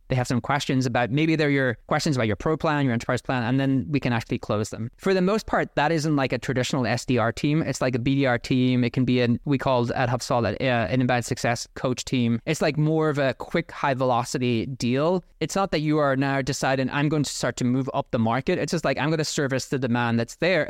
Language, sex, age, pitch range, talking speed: English, male, 20-39, 125-160 Hz, 260 wpm